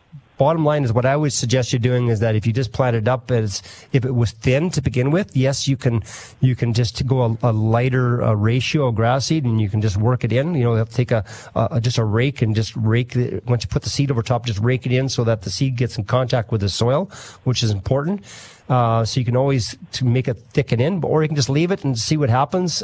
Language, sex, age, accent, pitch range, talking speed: English, male, 40-59, American, 110-130 Hz, 275 wpm